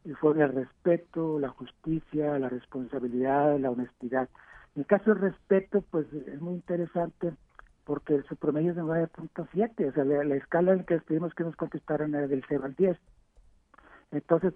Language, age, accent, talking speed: Spanish, 60-79, Mexican, 175 wpm